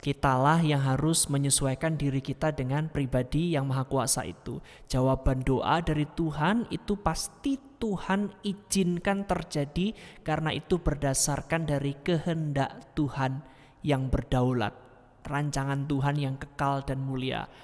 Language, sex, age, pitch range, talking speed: Malay, male, 20-39, 140-175 Hz, 120 wpm